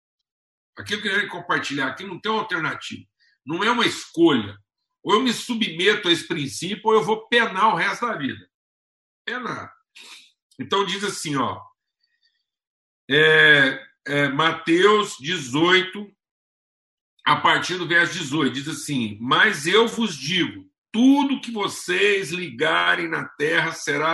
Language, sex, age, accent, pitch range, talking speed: Portuguese, male, 60-79, Brazilian, 175-245 Hz, 135 wpm